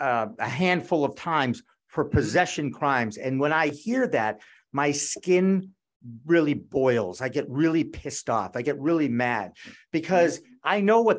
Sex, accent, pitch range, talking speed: male, American, 140-190 Hz, 160 wpm